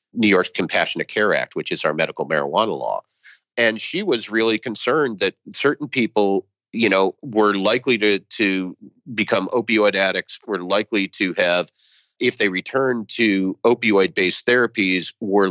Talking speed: 150 wpm